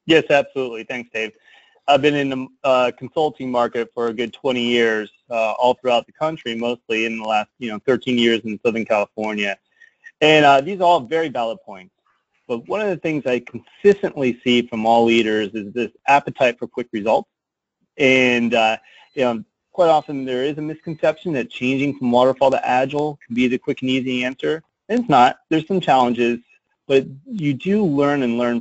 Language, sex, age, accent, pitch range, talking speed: English, male, 30-49, American, 115-145 Hz, 195 wpm